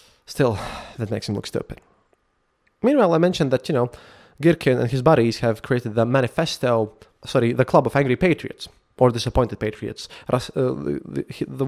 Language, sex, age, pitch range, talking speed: English, male, 20-39, 115-155 Hz, 155 wpm